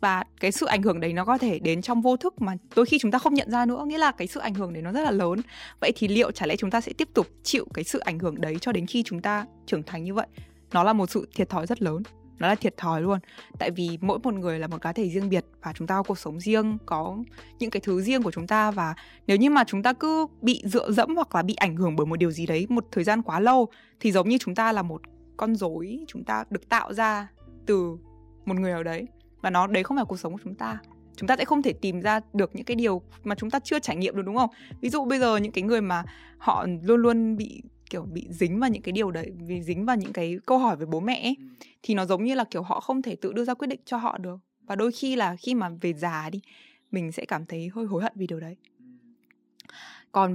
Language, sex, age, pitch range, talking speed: Vietnamese, female, 20-39, 175-240 Hz, 285 wpm